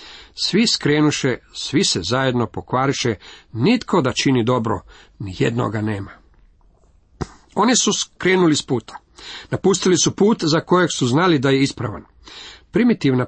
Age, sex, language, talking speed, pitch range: 40-59, male, Croatian, 130 wpm, 115-150 Hz